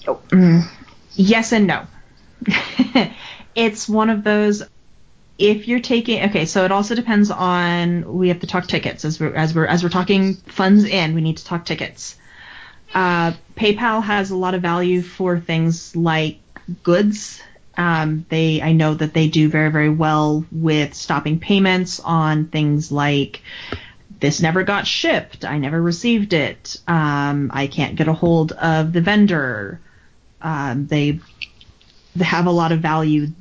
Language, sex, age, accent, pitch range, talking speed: English, female, 30-49, American, 155-185 Hz, 160 wpm